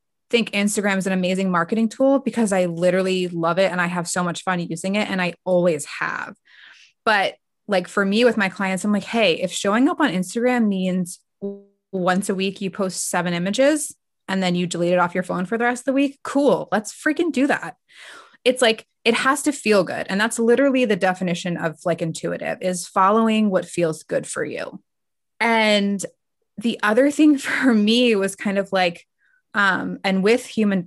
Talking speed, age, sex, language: 200 wpm, 20-39, female, English